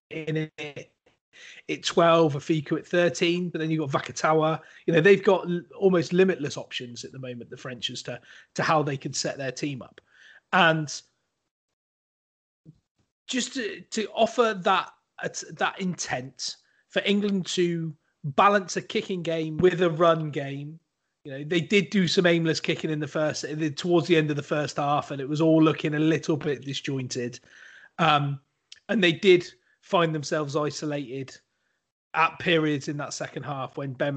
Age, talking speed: 30-49, 170 wpm